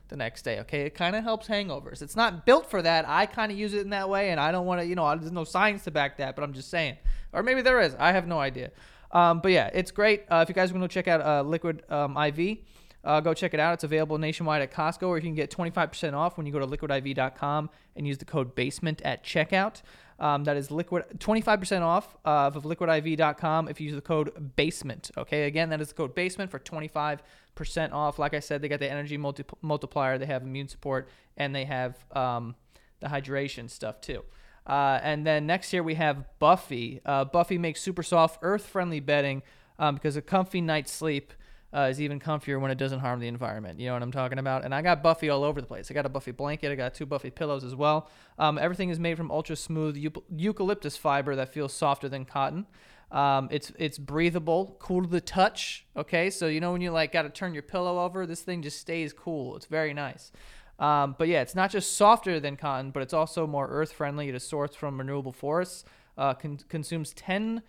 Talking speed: 235 wpm